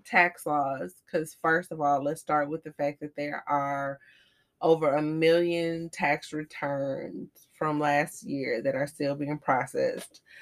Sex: female